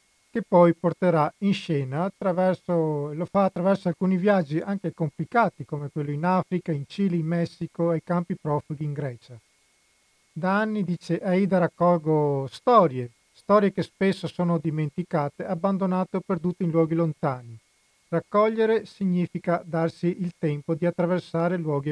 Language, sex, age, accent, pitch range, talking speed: Italian, male, 50-69, native, 155-185 Hz, 140 wpm